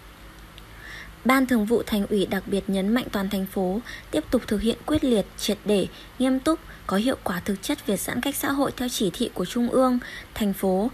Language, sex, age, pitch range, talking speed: Vietnamese, female, 20-39, 205-260 Hz, 220 wpm